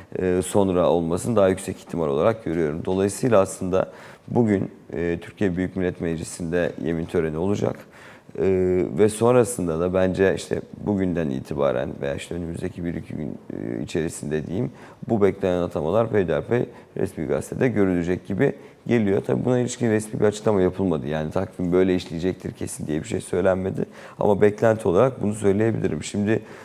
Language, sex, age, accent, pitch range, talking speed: Turkish, male, 40-59, native, 85-105 Hz, 140 wpm